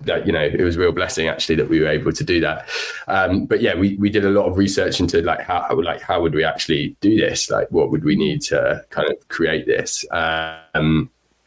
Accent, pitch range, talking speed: British, 80-100 Hz, 245 wpm